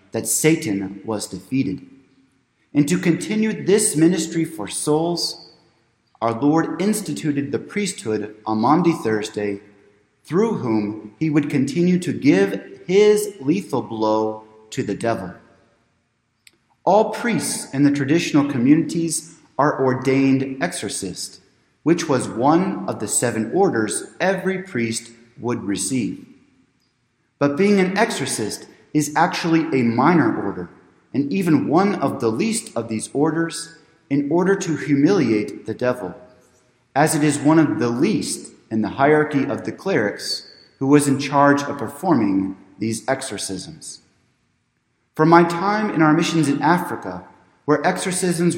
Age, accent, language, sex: 30-49, American, English, male